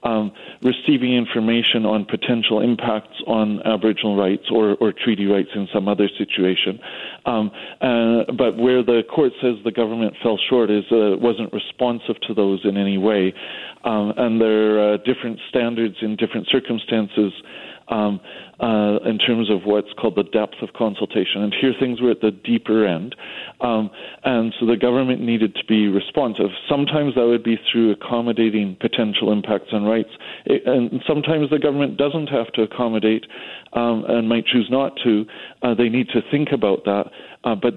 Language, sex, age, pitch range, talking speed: English, male, 40-59, 105-120 Hz, 170 wpm